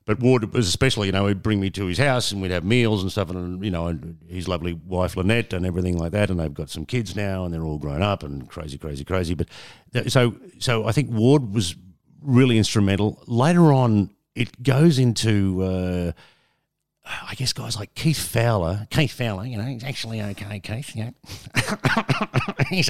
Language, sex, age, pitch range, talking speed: English, male, 50-69, 85-115 Hz, 200 wpm